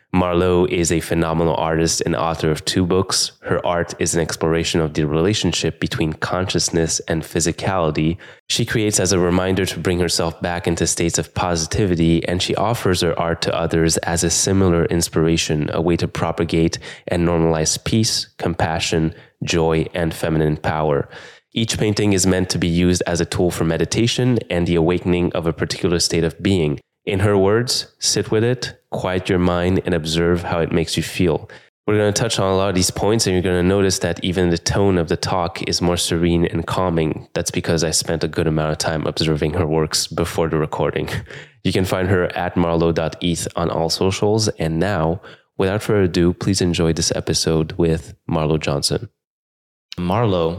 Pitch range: 80-95 Hz